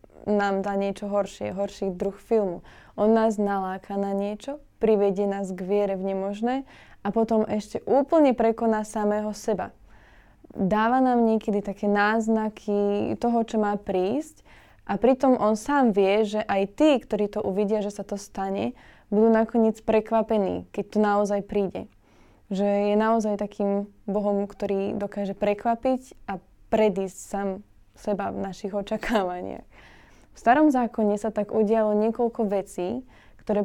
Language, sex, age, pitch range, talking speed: Slovak, female, 20-39, 200-220 Hz, 145 wpm